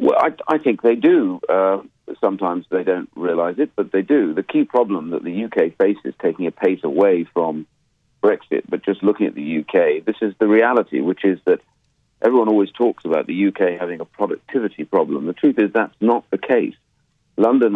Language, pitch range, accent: English, 95-115 Hz, British